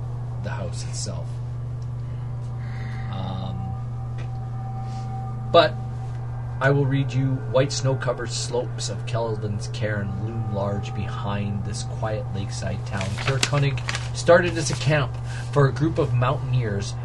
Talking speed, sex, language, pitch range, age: 115 wpm, male, English, 115-125 Hz, 30-49